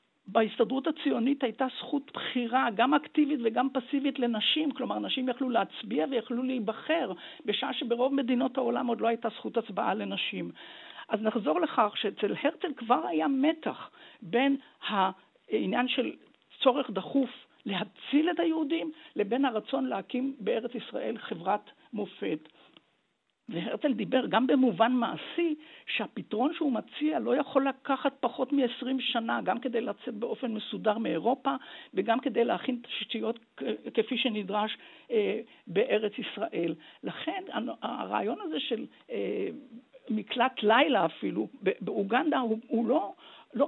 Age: 50-69